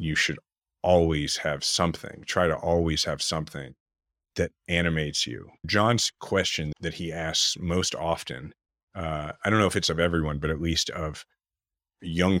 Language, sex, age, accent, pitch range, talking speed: English, male, 30-49, American, 75-85 Hz, 160 wpm